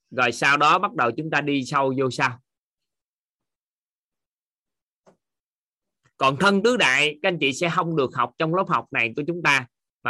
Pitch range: 125-165 Hz